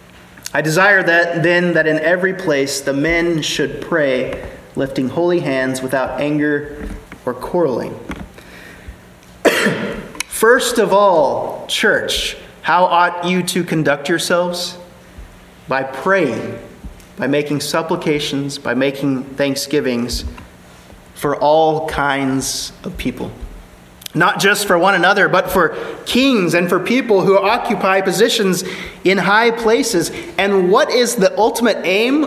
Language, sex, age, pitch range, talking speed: English, male, 30-49, 150-215 Hz, 120 wpm